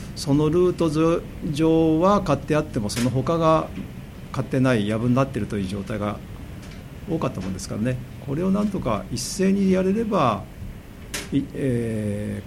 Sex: male